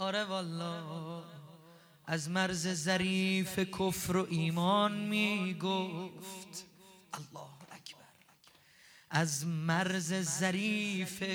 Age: 30-49